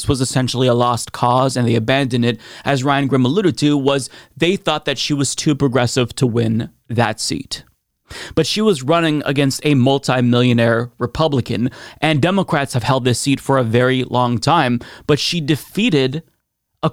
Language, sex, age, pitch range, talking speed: English, male, 30-49, 130-165 Hz, 175 wpm